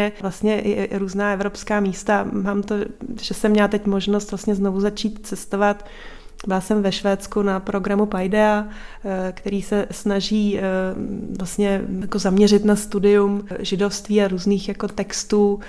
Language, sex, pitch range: Slovak, female, 195-205 Hz